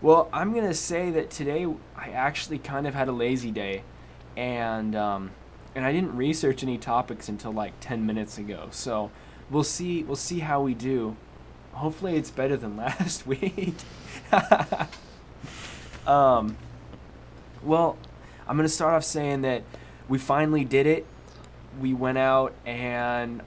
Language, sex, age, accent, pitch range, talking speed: English, male, 20-39, American, 110-135 Hz, 150 wpm